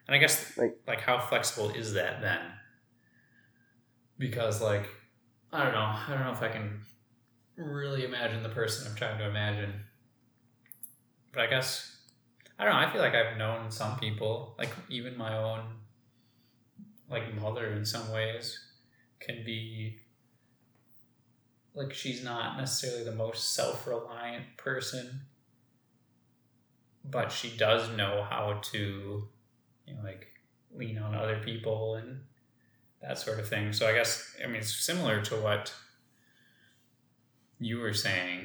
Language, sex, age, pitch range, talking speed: English, male, 20-39, 110-120 Hz, 140 wpm